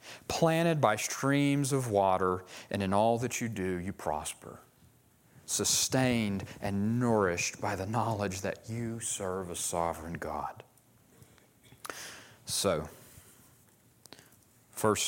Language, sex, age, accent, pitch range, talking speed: English, male, 40-59, American, 95-125 Hz, 105 wpm